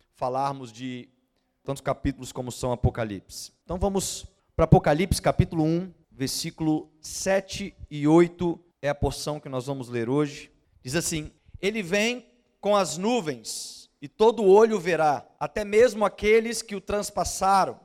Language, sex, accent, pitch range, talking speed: Portuguese, male, Brazilian, 145-195 Hz, 140 wpm